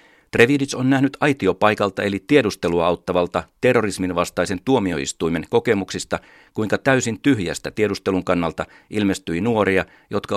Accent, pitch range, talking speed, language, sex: native, 90-115 Hz, 110 wpm, Finnish, male